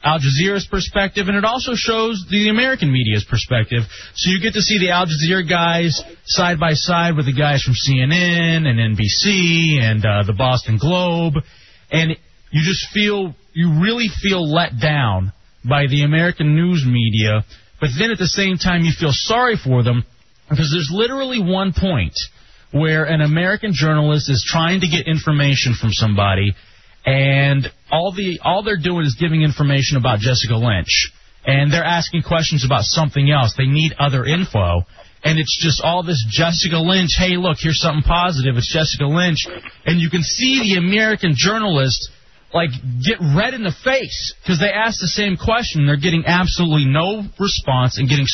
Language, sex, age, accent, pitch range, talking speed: English, male, 30-49, American, 130-180 Hz, 170 wpm